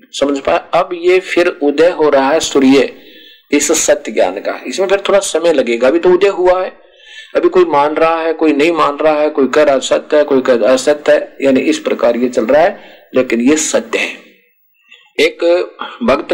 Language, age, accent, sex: Hindi, 50-69, native, male